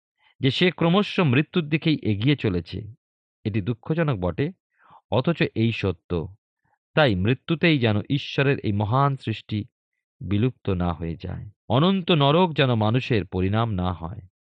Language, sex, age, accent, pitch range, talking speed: Bengali, male, 40-59, native, 100-150 Hz, 130 wpm